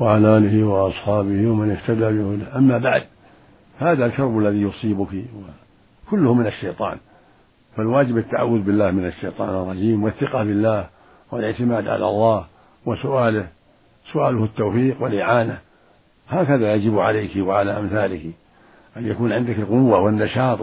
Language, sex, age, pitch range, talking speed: Arabic, male, 60-79, 110-130 Hz, 110 wpm